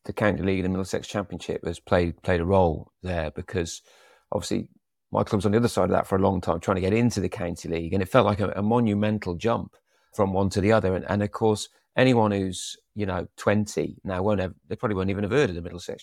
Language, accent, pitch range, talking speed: English, British, 95-115 Hz, 255 wpm